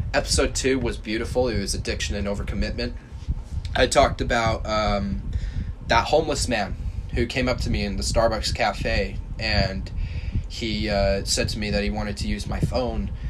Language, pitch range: English, 90-105 Hz